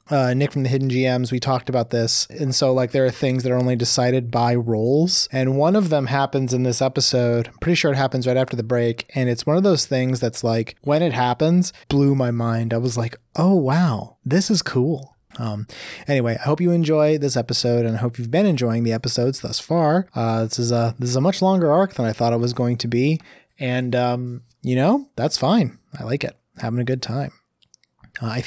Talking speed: 235 wpm